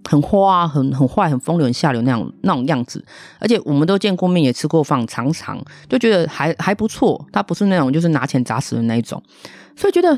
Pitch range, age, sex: 130-200 Hz, 30-49, female